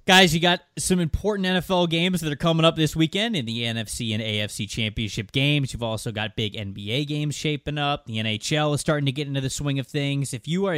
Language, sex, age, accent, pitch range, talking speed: English, male, 20-39, American, 110-150 Hz, 235 wpm